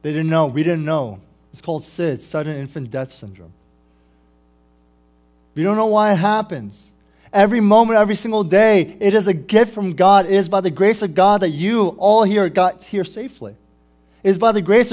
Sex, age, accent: male, 20-39, American